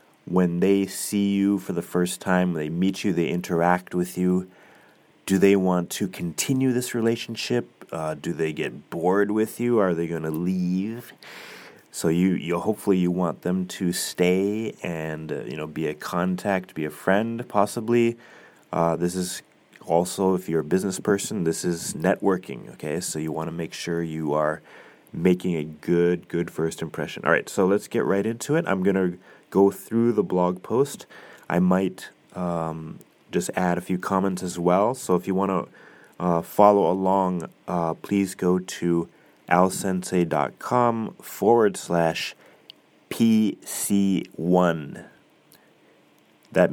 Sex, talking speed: male, 160 wpm